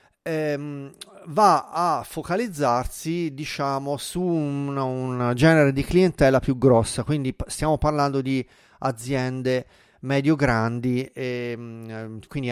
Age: 30-49